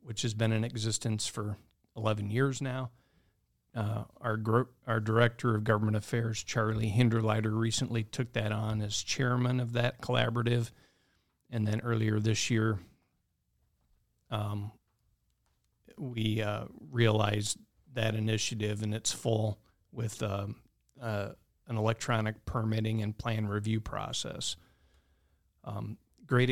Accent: American